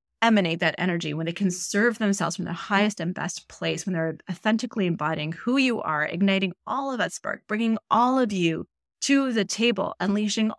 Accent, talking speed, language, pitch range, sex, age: American, 195 wpm, English, 170-215 Hz, female, 30-49